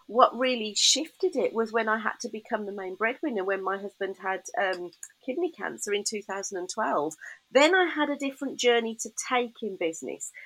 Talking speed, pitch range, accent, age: 185 wpm, 190-255 Hz, British, 40-59